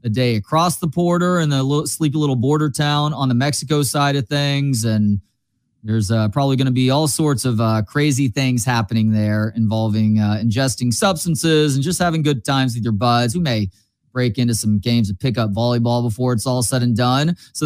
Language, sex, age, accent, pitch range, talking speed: English, male, 30-49, American, 125-165 Hz, 205 wpm